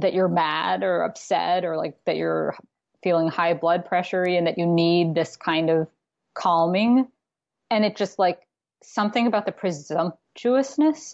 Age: 20-39